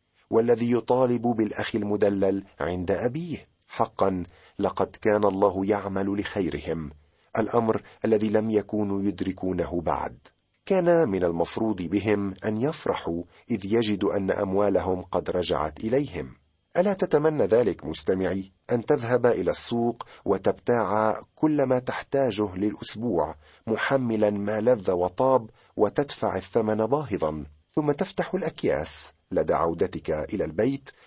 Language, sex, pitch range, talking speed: Arabic, male, 95-125 Hz, 110 wpm